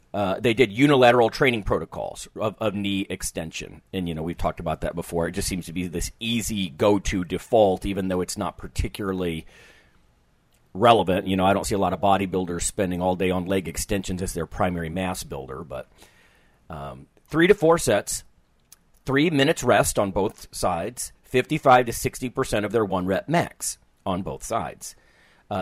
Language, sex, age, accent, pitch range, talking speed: English, male, 40-59, American, 85-115 Hz, 180 wpm